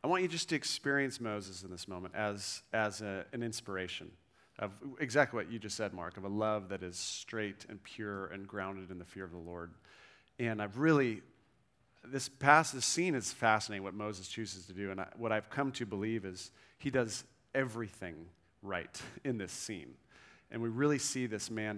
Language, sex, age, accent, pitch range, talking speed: English, male, 40-59, American, 100-130 Hz, 195 wpm